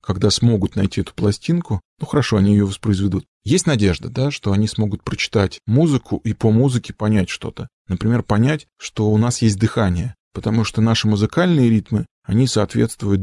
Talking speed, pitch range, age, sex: 170 wpm, 100-115 Hz, 20-39, male